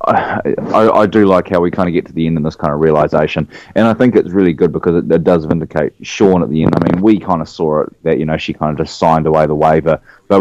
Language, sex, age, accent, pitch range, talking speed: English, male, 20-39, Australian, 75-90 Hz, 295 wpm